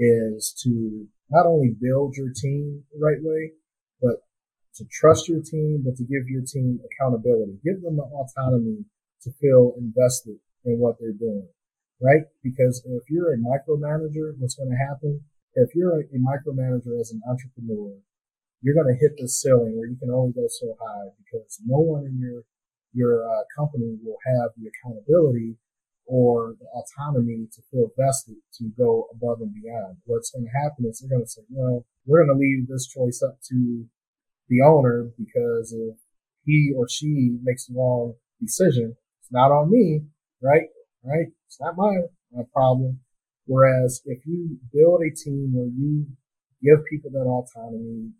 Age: 40-59